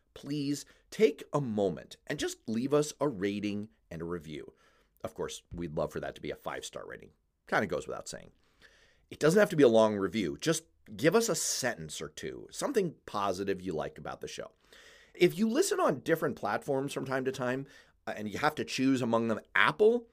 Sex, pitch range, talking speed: male, 100-150 Hz, 210 wpm